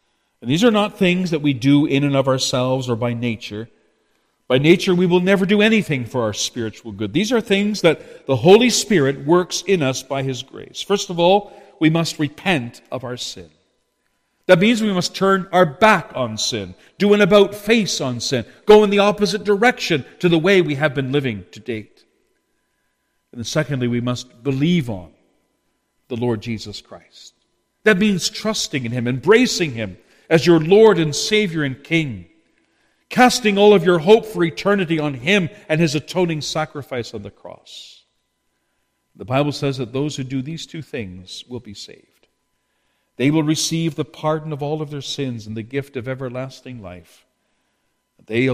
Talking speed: 180 wpm